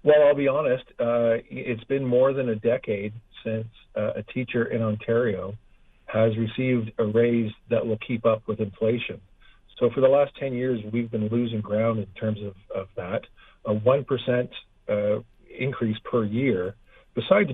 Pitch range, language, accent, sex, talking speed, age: 110-130 Hz, English, American, male, 170 wpm, 50-69